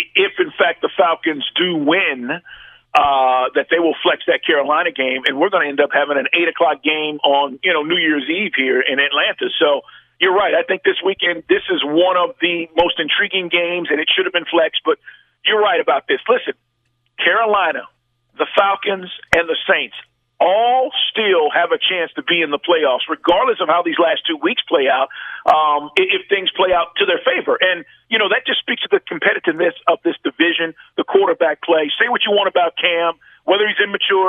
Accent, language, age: American, English, 50-69